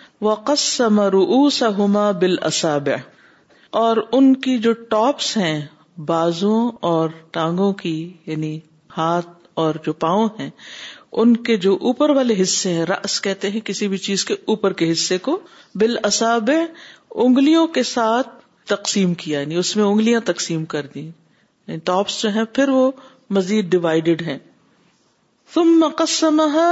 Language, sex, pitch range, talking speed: Urdu, female, 180-240 Hz, 135 wpm